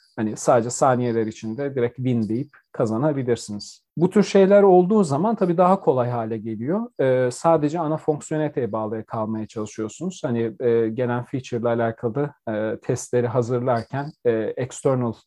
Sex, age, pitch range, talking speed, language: male, 40-59, 115-150 Hz, 140 wpm, Turkish